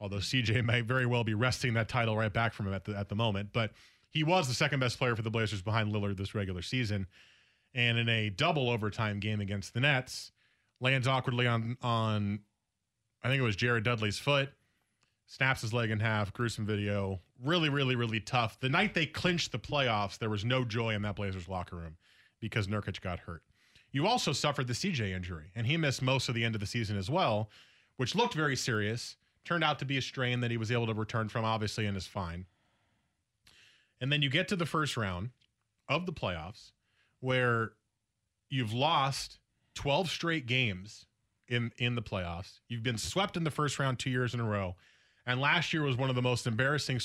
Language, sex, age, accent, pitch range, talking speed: English, male, 30-49, American, 105-130 Hz, 210 wpm